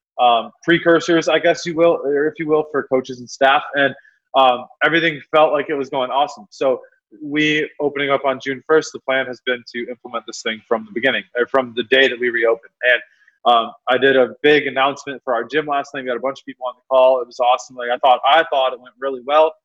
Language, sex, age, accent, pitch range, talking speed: English, male, 20-39, American, 125-150 Hz, 245 wpm